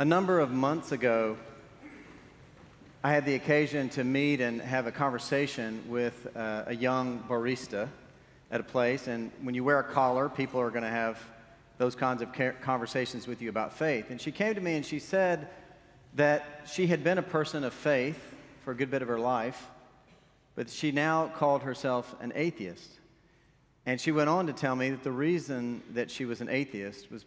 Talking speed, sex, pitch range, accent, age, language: 195 wpm, male, 120-145 Hz, American, 40-59, English